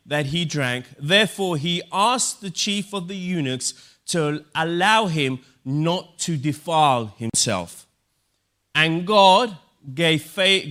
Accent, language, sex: British, Italian, male